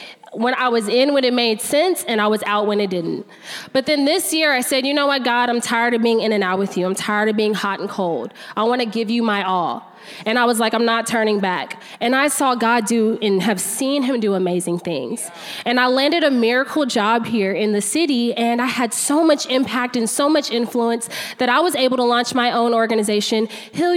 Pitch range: 210-275 Hz